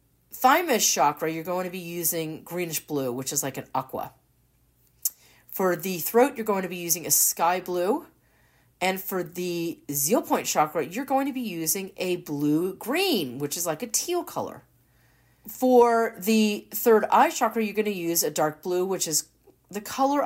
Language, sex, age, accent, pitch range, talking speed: English, female, 40-59, American, 150-215 Hz, 180 wpm